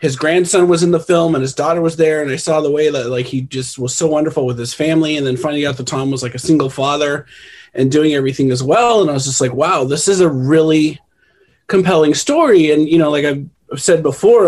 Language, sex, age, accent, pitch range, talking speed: English, male, 30-49, American, 135-165 Hz, 255 wpm